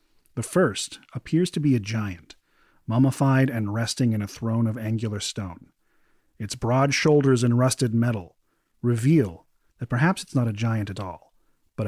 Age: 30-49